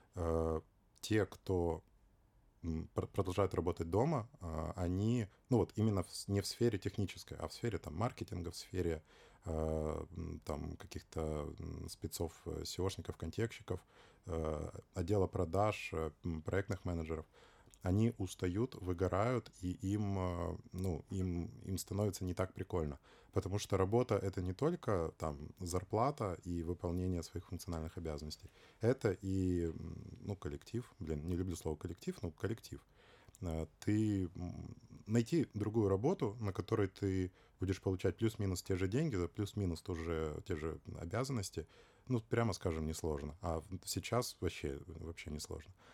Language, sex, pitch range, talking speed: Ukrainian, male, 85-105 Hz, 125 wpm